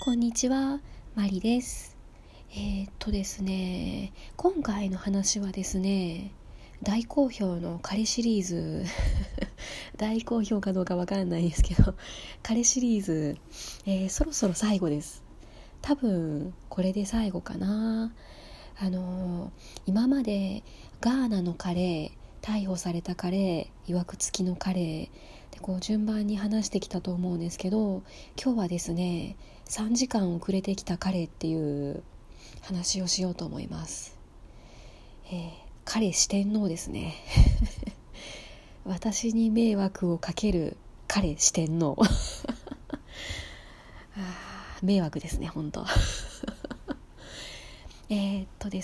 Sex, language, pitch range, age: female, Japanese, 175-215 Hz, 20-39